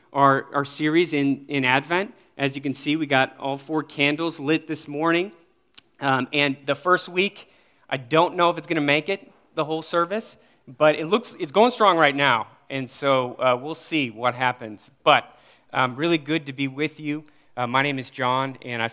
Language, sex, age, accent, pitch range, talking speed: English, male, 30-49, American, 135-160 Hz, 205 wpm